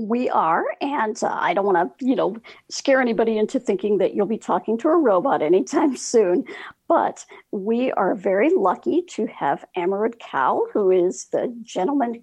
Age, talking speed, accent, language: 50-69, 175 wpm, American, English